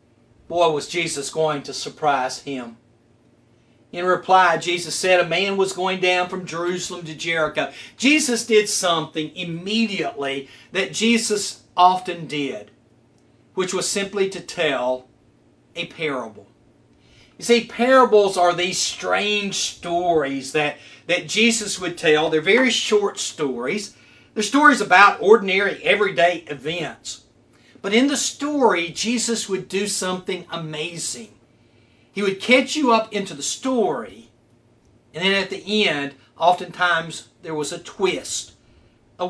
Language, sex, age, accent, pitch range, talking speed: English, male, 40-59, American, 145-200 Hz, 130 wpm